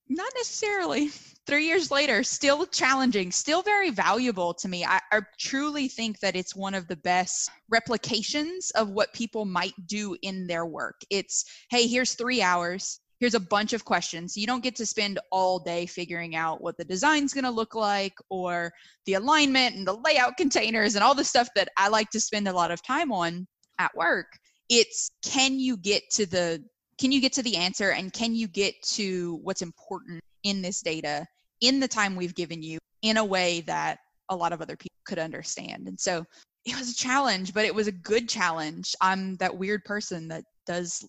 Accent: American